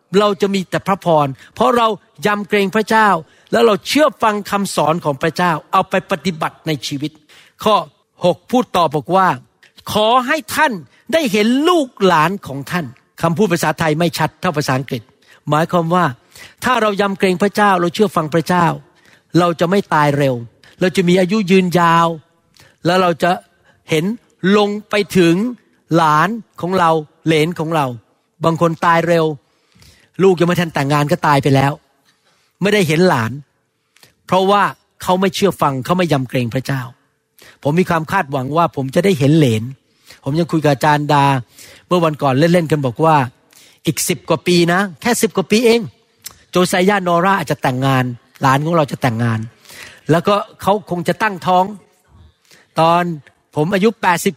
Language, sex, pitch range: Thai, male, 150-195 Hz